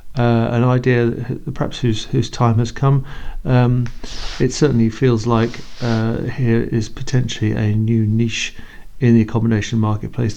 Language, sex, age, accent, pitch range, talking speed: English, male, 40-59, British, 105-125 Hz, 150 wpm